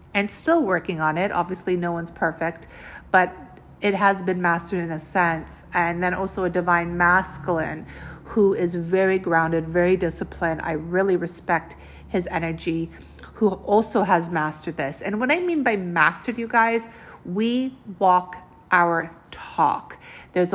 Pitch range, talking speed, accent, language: 170-205 Hz, 150 wpm, American, English